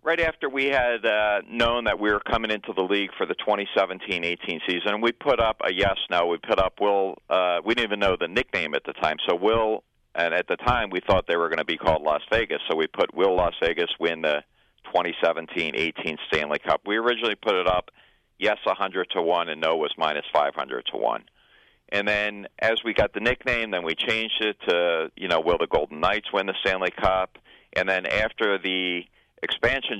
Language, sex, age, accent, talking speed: English, male, 40-59, American, 205 wpm